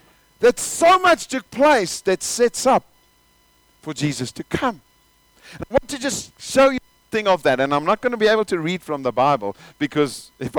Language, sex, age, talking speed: English, male, 50-69, 205 wpm